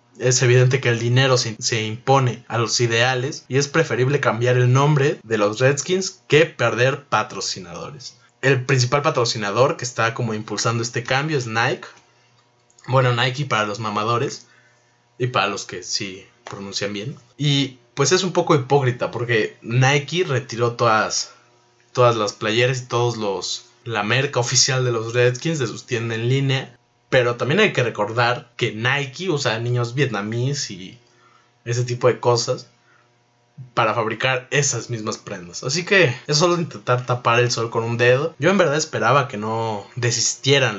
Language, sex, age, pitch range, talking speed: Spanish, male, 20-39, 115-130 Hz, 165 wpm